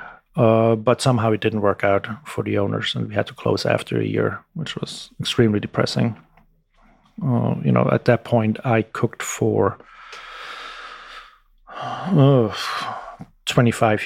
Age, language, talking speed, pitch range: 30-49, English, 140 wpm, 100-120 Hz